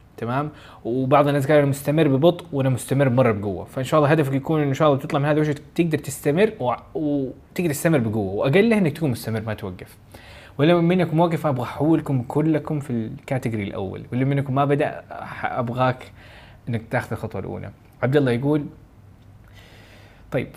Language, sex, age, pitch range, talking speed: Arabic, male, 20-39, 110-150 Hz, 165 wpm